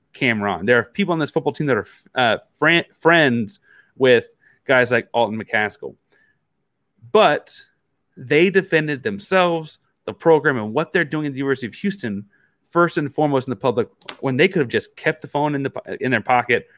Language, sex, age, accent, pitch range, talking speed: English, male, 30-49, American, 115-160 Hz, 180 wpm